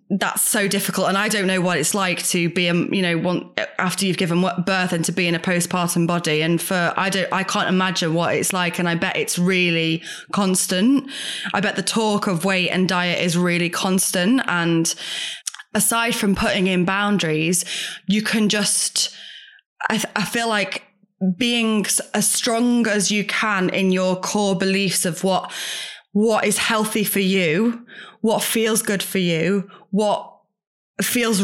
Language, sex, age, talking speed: English, female, 20-39, 170 wpm